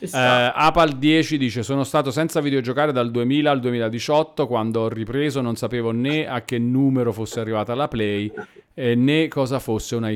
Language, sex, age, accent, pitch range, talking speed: Italian, male, 40-59, native, 110-150 Hz, 165 wpm